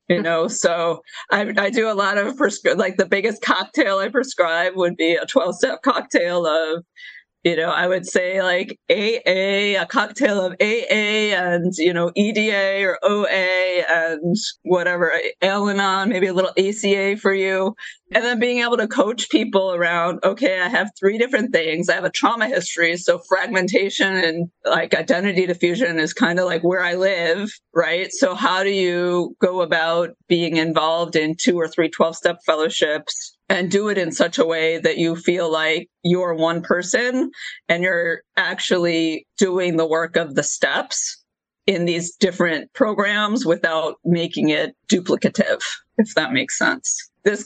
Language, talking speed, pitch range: English, 165 wpm, 170-205 Hz